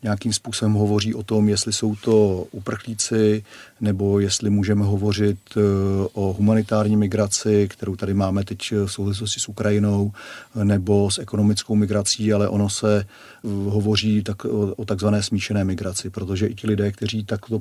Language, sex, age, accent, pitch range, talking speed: Czech, male, 40-59, native, 100-105 Hz, 145 wpm